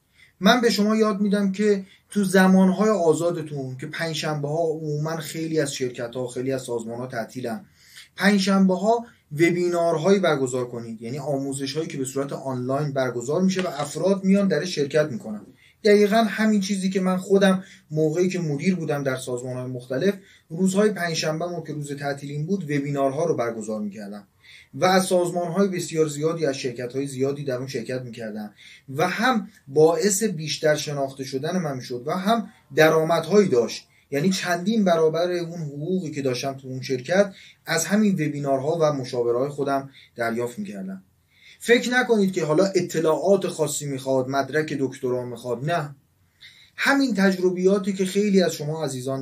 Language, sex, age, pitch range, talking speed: Persian, male, 30-49, 135-190 Hz, 155 wpm